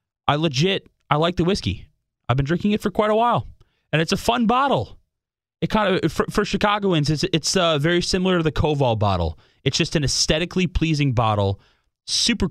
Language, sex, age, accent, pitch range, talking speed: English, male, 20-39, American, 110-150 Hz, 195 wpm